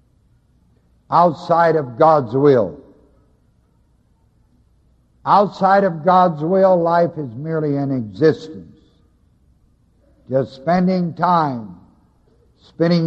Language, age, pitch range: English, 60-79, 125-175 Hz